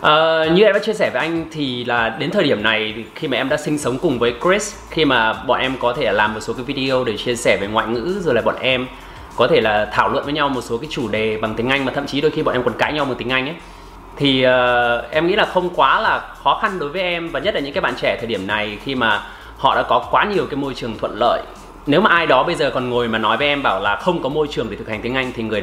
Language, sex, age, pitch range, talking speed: Vietnamese, male, 20-39, 115-150 Hz, 305 wpm